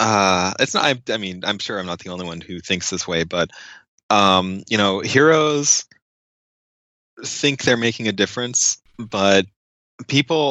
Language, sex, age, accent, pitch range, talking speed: English, male, 30-49, American, 95-110 Hz, 165 wpm